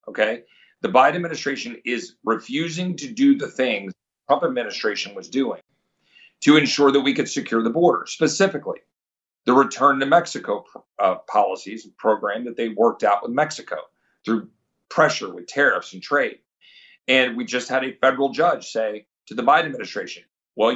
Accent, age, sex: American, 40-59, male